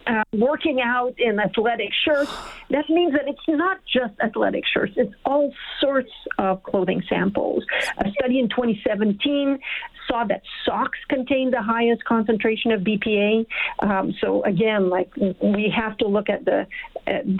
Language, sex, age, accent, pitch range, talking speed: English, female, 50-69, American, 195-265 Hz, 150 wpm